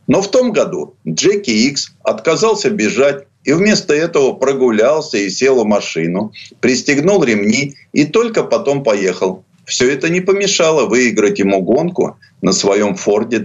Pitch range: 115-160 Hz